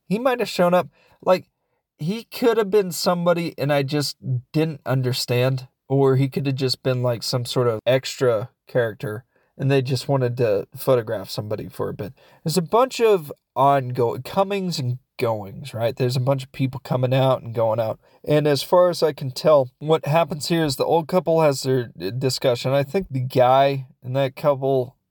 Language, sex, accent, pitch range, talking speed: English, male, American, 125-150 Hz, 195 wpm